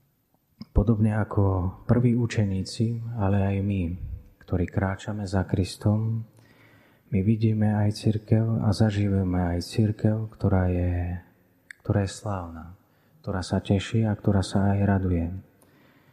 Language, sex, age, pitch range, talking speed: Slovak, male, 30-49, 95-110 Hz, 120 wpm